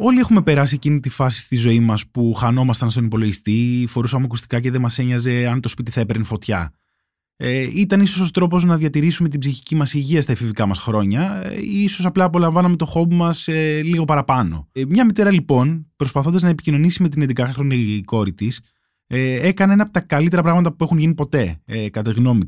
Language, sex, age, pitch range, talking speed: Greek, male, 20-39, 120-170 Hz, 205 wpm